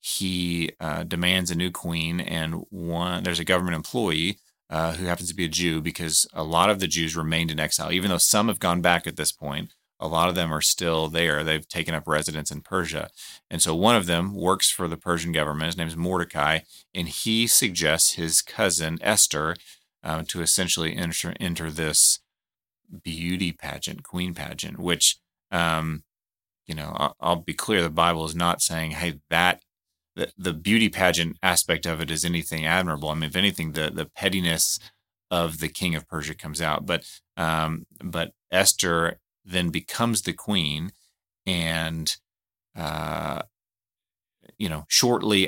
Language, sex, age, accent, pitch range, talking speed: English, male, 30-49, American, 80-90 Hz, 175 wpm